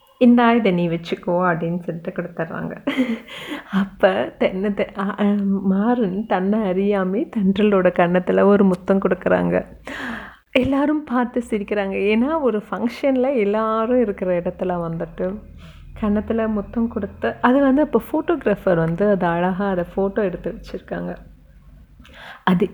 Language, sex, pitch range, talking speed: Tamil, female, 170-210 Hz, 110 wpm